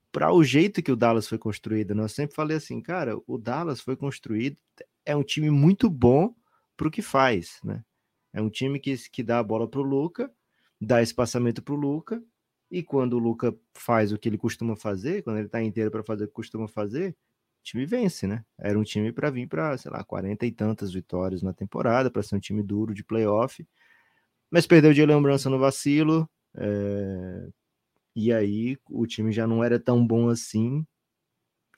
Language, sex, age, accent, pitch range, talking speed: Portuguese, male, 20-39, Brazilian, 100-130 Hz, 200 wpm